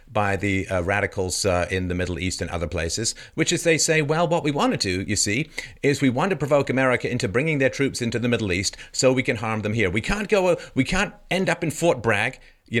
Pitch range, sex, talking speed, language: 100-130 Hz, male, 260 wpm, English